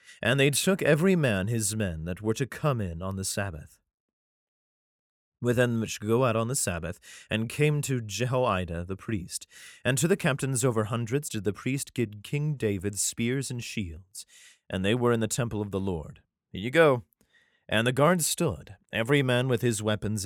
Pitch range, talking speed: 100-135 Hz, 185 wpm